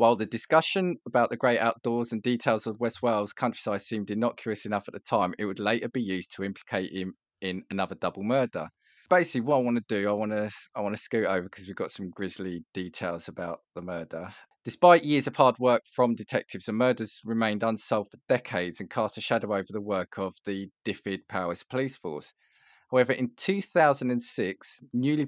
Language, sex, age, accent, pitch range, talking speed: English, male, 20-39, British, 100-125 Hz, 200 wpm